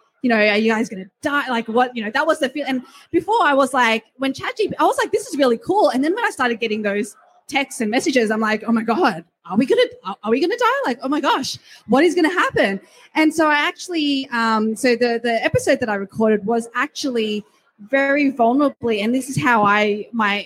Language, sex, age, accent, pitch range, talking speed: English, female, 20-39, Australian, 210-270 Hz, 240 wpm